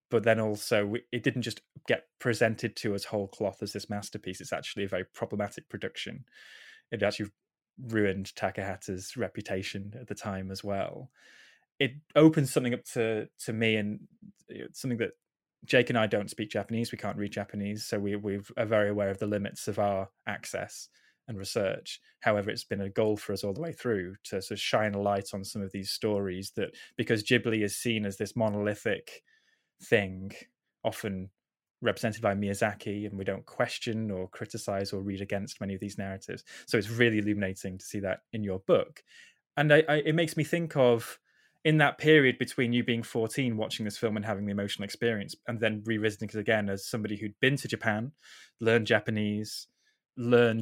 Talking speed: 185 wpm